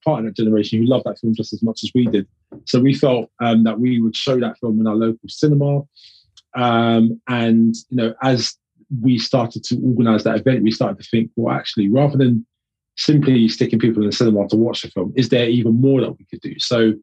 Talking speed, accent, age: 235 wpm, British, 20-39